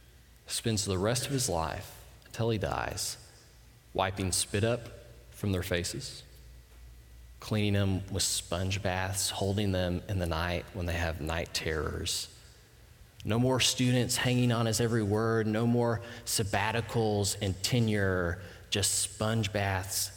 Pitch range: 95-140 Hz